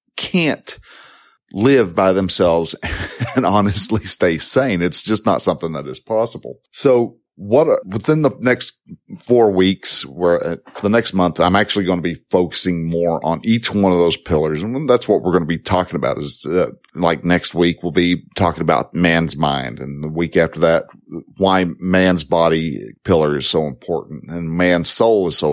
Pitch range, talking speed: 85-105 Hz, 180 wpm